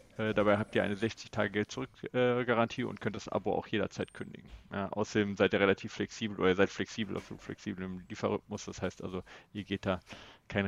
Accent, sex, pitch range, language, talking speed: German, male, 100-115 Hz, German, 185 wpm